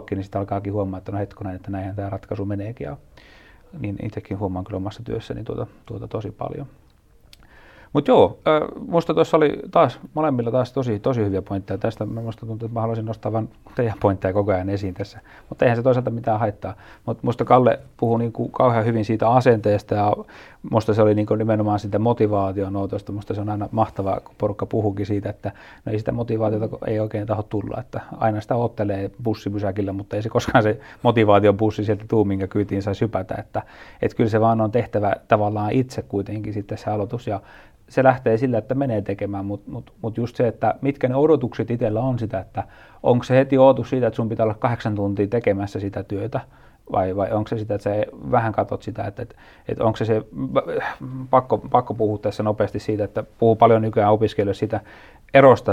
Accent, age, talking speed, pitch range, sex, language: native, 30-49, 200 wpm, 100-115 Hz, male, Finnish